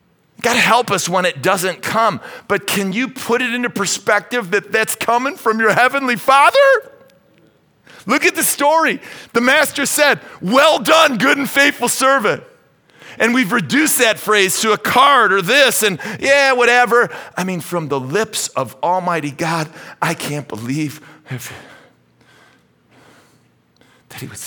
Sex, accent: male, American